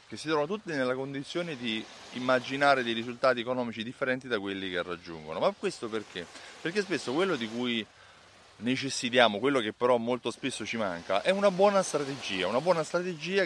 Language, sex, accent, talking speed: Italian, male, native, 175 wpm